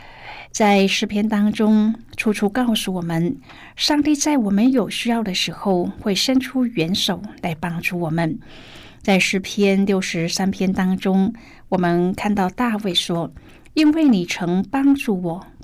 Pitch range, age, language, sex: 180-235 Hz, 50-69, Chinese, female